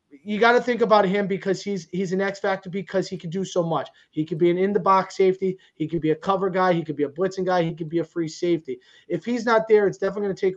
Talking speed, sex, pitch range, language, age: 290 wpm, male, 180-225 Hz, English, 30-49